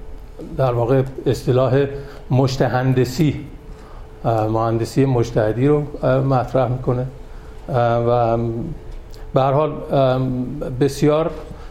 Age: 50-69